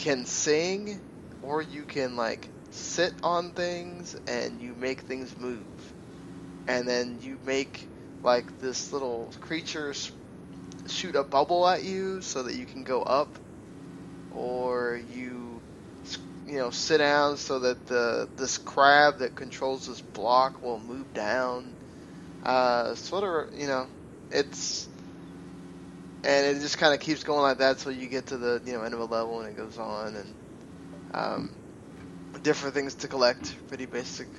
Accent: American